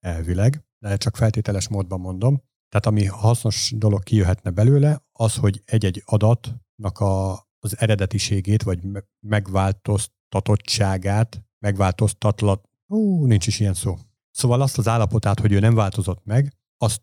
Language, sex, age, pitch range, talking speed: Hungarian, male, 50-69, 100-115 Hz, 125 wpm